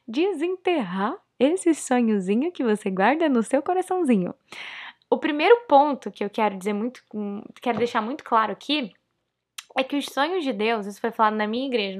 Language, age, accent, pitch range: Portuguese, 10-29, Brazilian, 220-280 Hz